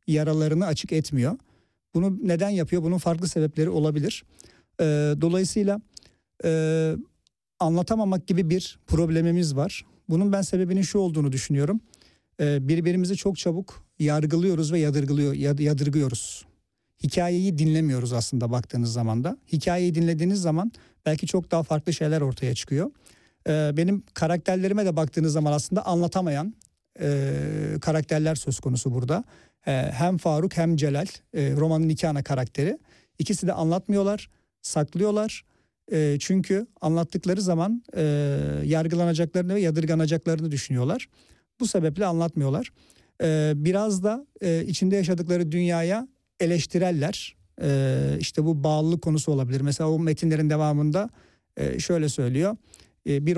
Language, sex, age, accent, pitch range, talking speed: Turkish, male, 50-69, native, 150-180 Hz, 125 wpm